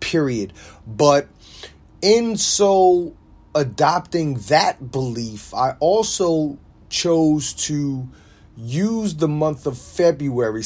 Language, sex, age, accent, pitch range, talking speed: English, male, 30-49, American, 115-150 Hz, 90 wpm